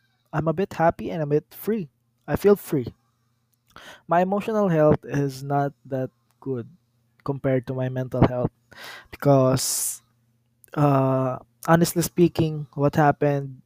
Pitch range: 120-155 Hz